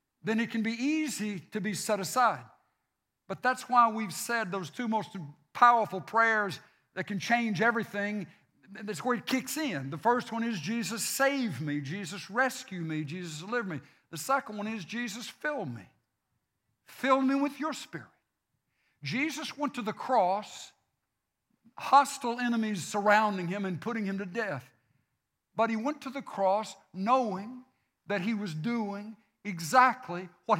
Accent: American